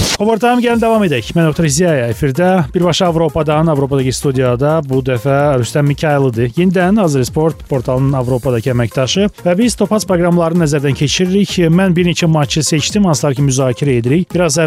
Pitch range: 125-170 Hz